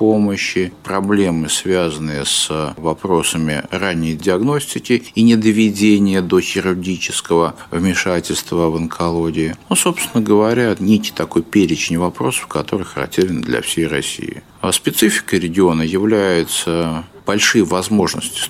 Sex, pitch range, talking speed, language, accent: male, 80-105 Hz, 105 wpm, Russian, native